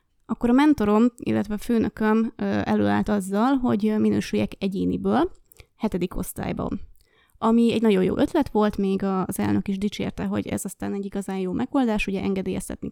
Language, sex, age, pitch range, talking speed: Hungarian, female, 20-39, 195-240 Hz, 155 wpm